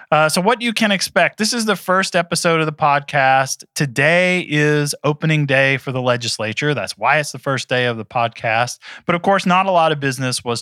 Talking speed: 220 wpm